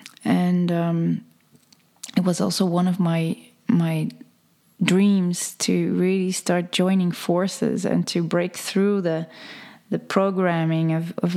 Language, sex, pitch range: English, female, 175-205 Hz